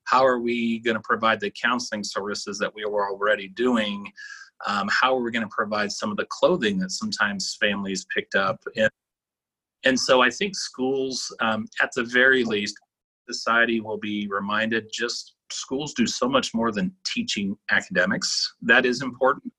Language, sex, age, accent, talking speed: English, male, 30-49, American, 175 wpm